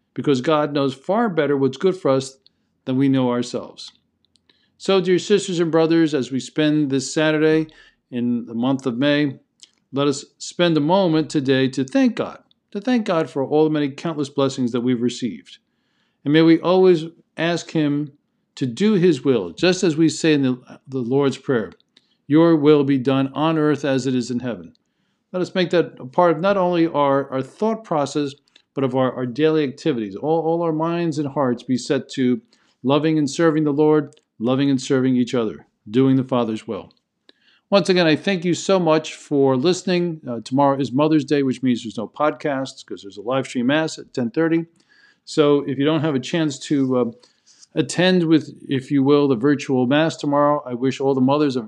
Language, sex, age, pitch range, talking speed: English, male, 50-69, 135-160 Hz, 200 wpm